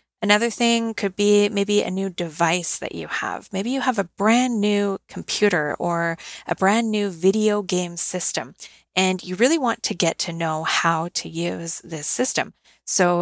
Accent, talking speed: American, 175 wpm